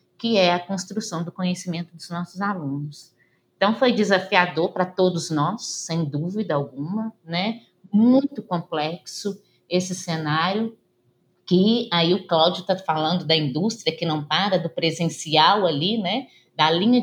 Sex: female